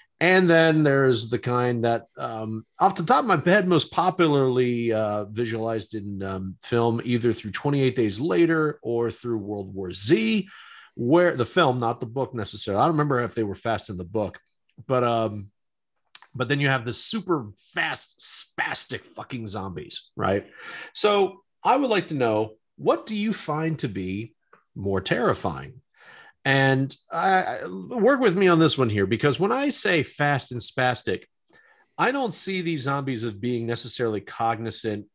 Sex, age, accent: male, 40-59, American